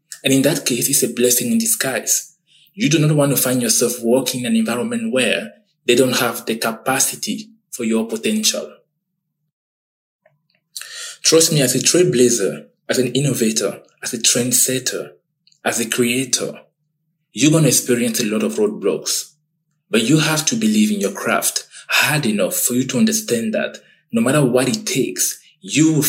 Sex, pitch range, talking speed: male, 125-175 Hz, 170 wpm